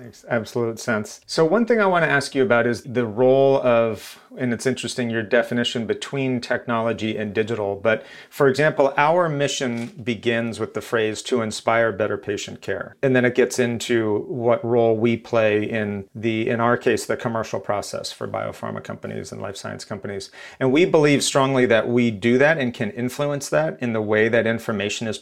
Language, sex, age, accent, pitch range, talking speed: English, male, 40-59, American, 110-125 Hz, 195 wpm